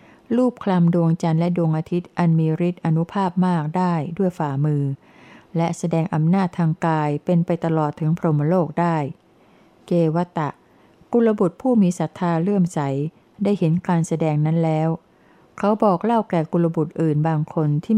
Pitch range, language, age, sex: 160-195 Hz, Thai, 60-79, female